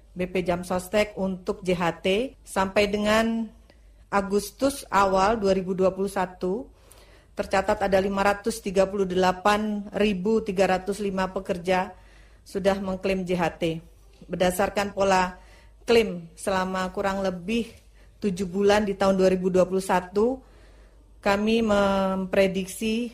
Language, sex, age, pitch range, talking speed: Indonesian, female, 40-59, 180-200 Hz, 80 wpm